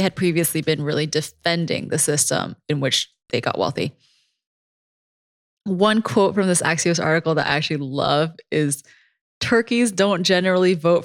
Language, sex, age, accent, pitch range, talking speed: English, female, 20-39, American, 150-180 Hz, 145 wpm